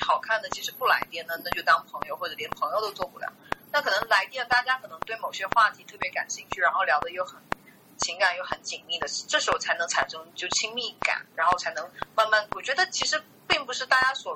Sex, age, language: female, 30-49, Chinese